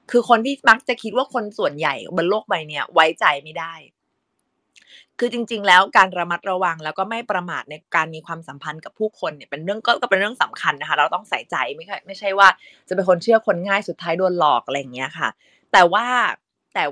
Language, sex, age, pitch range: Thai, female, 20-39, 165-220 Hz